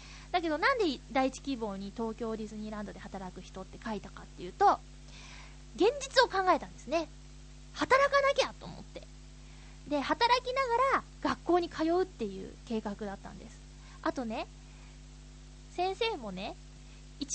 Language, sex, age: Japanese, female, 20-39